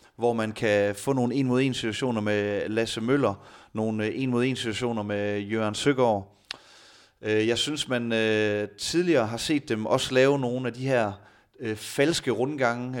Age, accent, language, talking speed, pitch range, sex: 30-49, native, Danish, 135 wpm, 105-130 Hz, male